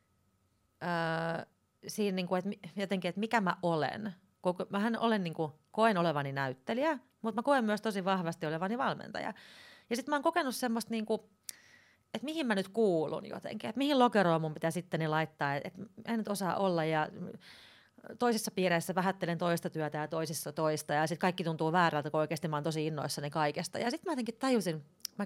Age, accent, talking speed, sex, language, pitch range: 30-49, native, 175 wpm, female, Finnish, 165-230 Hz